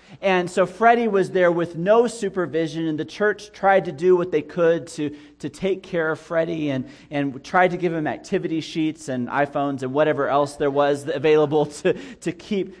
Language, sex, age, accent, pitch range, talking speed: English, male, 30-49, American, 120-160 Hz, 195 wpm